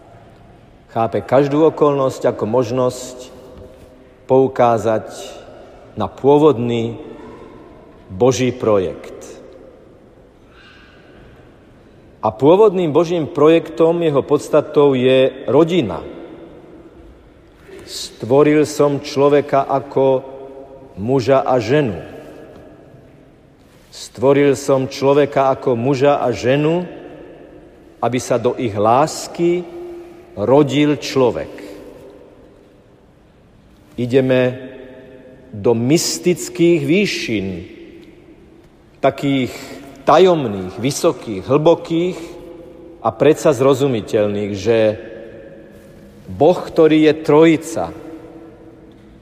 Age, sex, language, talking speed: 50-69, male, Slovak, 65 wpm